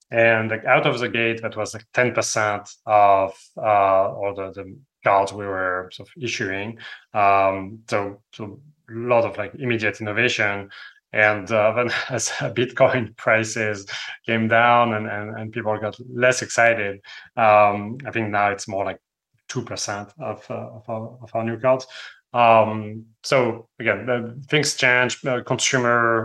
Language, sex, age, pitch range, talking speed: English, male, 30-49, 105-120 Hz, 155 wpm